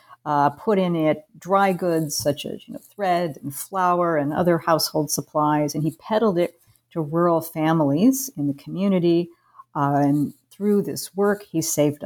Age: 50-69